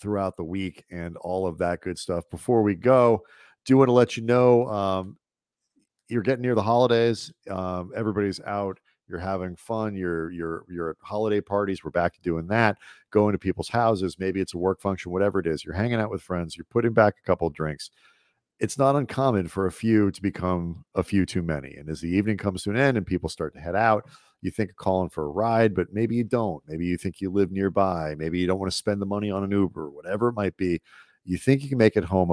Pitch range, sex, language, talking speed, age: 90-110 Hz, male, English, 240 wpm, 40-59